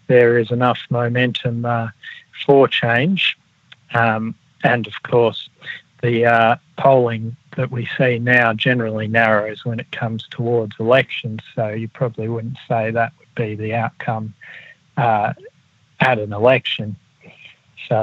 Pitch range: 115-130 Hz